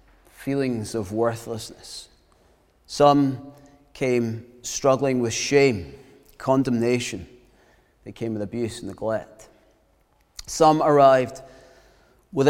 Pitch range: 115-150 Hz